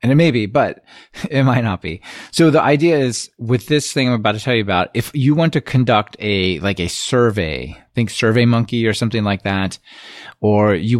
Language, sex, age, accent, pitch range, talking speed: English, male, 30-49, American, 95-125 Hz, 215 wpm